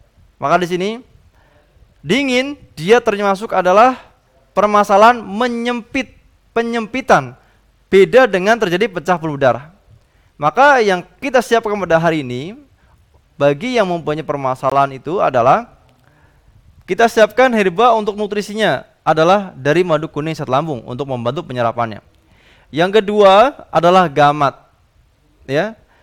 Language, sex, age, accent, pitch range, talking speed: Indonesian, male, 20-39, native, 145-215 Hz, 110 wpm